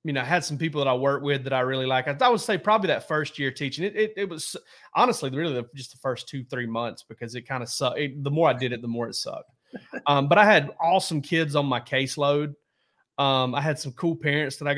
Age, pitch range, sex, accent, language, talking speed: 30-49, 125-150 Hz, male, American, English, 265 wpm